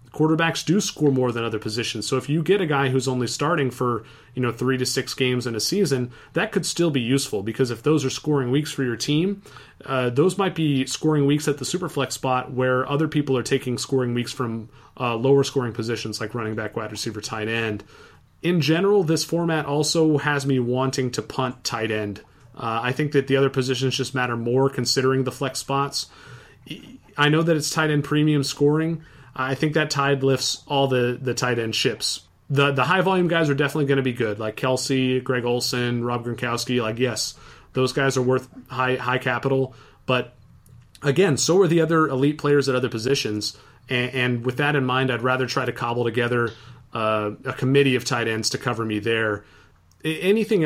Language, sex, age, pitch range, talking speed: English, male, 30-49, 120-145 Hz, 205 wpm